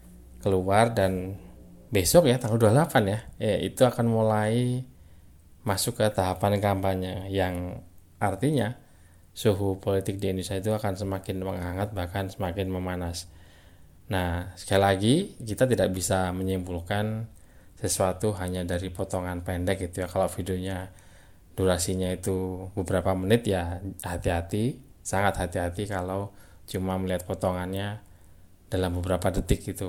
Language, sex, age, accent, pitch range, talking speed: Indonesian, male, 20-39, native, 90-100 Hz, 120 wpm